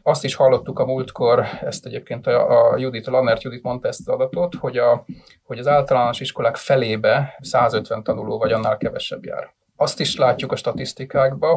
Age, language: 30-49, Hungarian